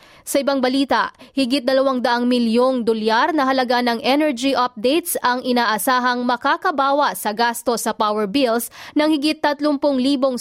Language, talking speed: Filipino, 135 wpm